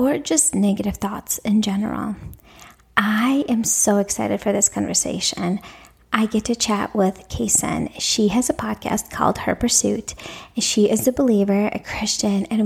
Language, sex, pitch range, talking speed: English, female, 205-230 Hz, 155 wpm